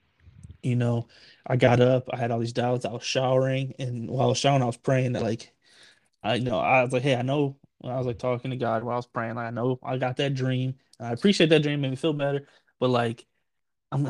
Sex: male